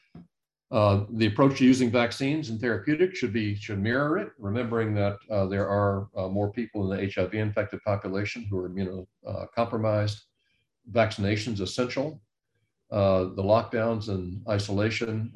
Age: 50-69